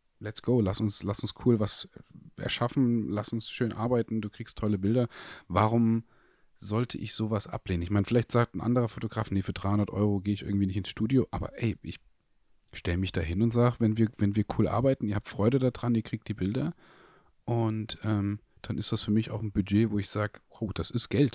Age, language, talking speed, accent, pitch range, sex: 30-49, German, 220 wpm, German, 100-120 Hz, male